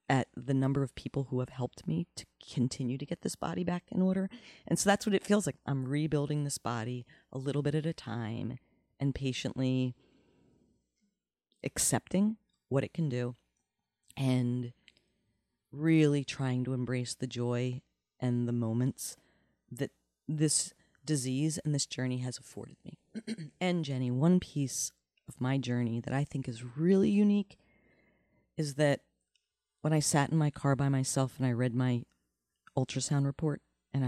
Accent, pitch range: American, 125-160 Hz